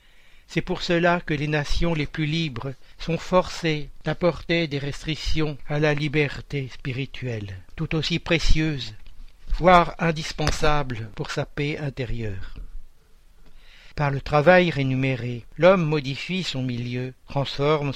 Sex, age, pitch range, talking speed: male, 60-79, 125-155 Hz, 120 wpm